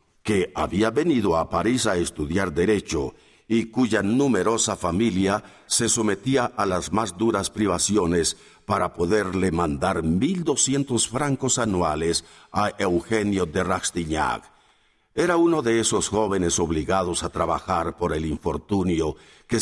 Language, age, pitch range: Spanish, 60-79, 85-110 Hz